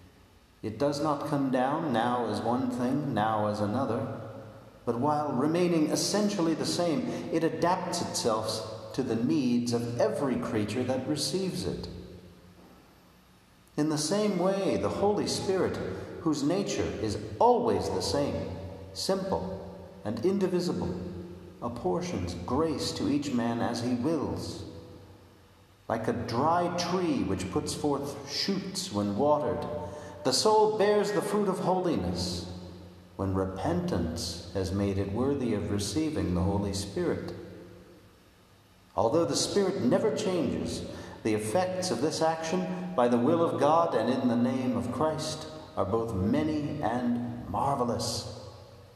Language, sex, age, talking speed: English, male, 40-59, 130 wpm